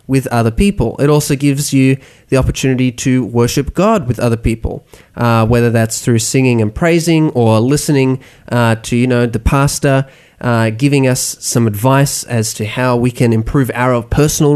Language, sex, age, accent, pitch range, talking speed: English, male, 20-39, Australian, 120-150 Hz, 175 wpm